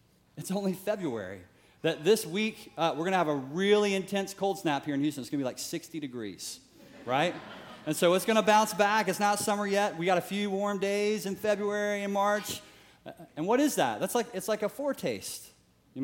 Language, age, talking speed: English, 30-49, 220 wpm